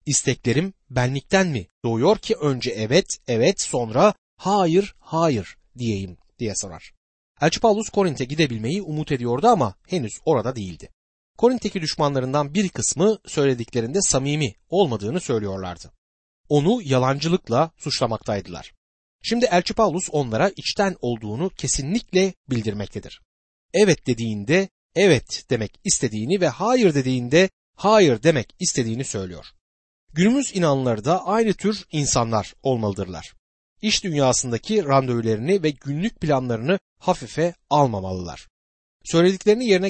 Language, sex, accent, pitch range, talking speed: Turkish, male, native, 120-190 Hz, 110 wpm